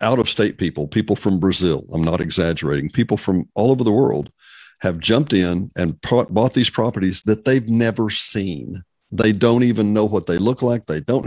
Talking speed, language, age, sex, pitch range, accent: 195 wpm, English, 50-69, male, 100-130 Hz, American